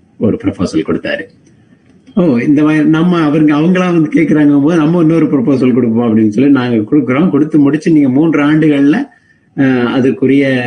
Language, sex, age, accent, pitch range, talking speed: Tamil, male, 30-49, native, 110-150 Hz, 140 wpm